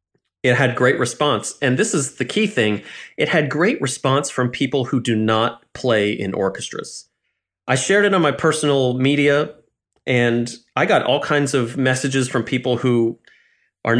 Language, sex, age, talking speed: English, male, 30-49, 170 wpm